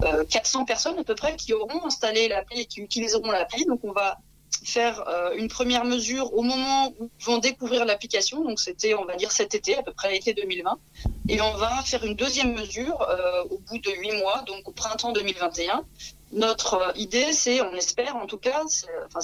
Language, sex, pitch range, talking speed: French, female, 195-250 Hz, 205 wpm